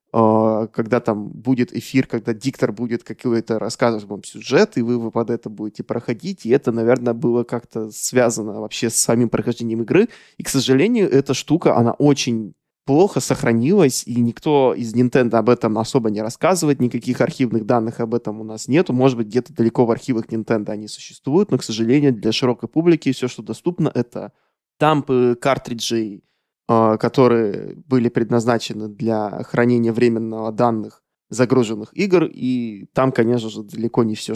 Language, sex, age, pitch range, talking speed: Russian, male, 20-39, 115-130 Hz, 160 wpm